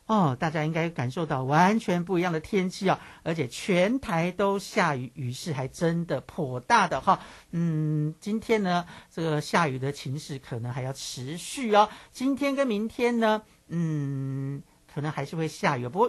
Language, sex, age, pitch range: Chinese, male, 50-69, 145-200 Hz